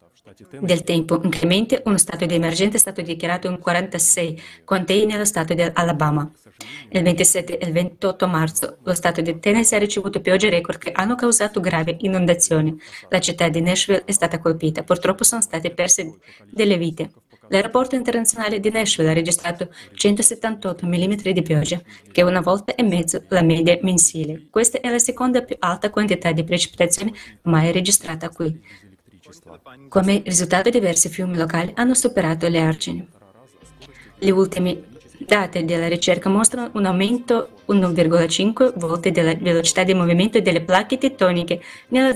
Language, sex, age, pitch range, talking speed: Italian, female, 20-39, 170-205 Hz, 150 wpm